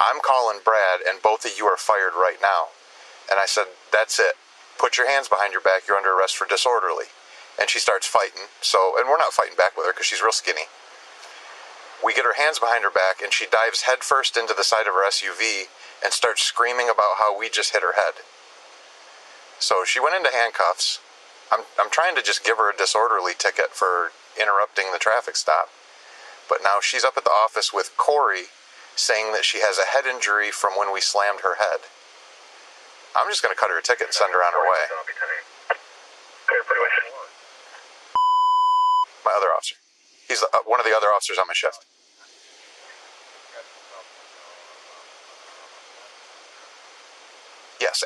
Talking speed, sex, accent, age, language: 175 wpm, male, American, 40-59, English